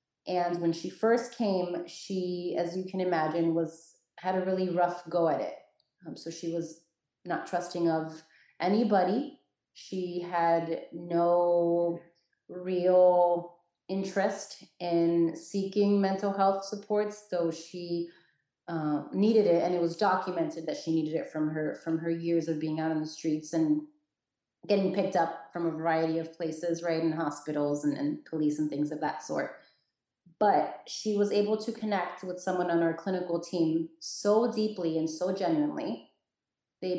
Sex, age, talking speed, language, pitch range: female, 30-49, 160 wpm, English, 165-190 Hz